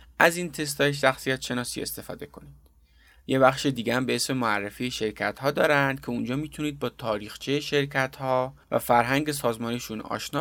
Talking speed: 155 wpm